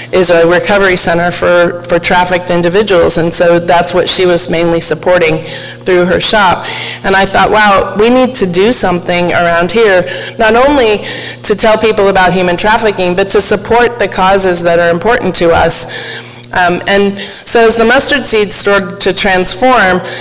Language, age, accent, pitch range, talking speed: English, 40-59, American, 180-210 Hz, 170 wpm